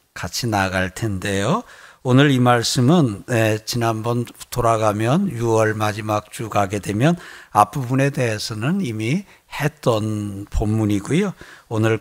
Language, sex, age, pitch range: Korean, male, 60-79, 110-160 Hz